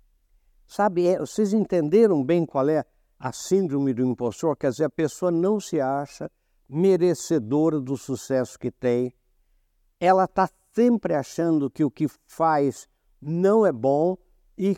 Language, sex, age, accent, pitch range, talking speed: Portuguese, male, 60-79, Brazilian, 145-190 Hz, 140 wpm